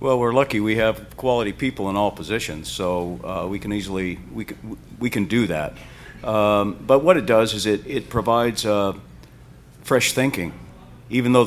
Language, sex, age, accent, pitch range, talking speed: English, male, 50-69, American, 90-120 Hz, 185 wpm